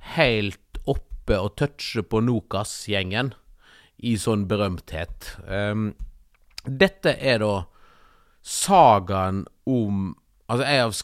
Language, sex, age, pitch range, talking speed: English, male, 30-49, 100-135 Hz, 100 wpm